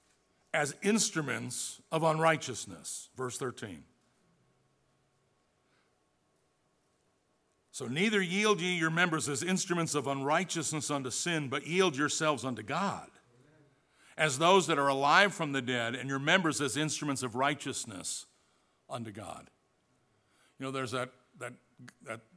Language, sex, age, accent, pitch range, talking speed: English, male, 50-69, American, 125-165 Hz, 125 wpm